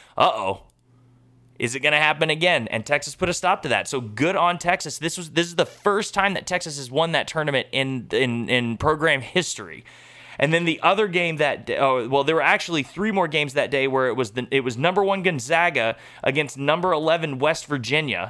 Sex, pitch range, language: male, 125-165 Hz, English